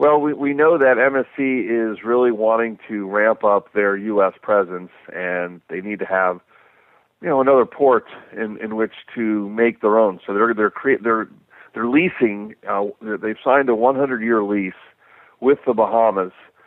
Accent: American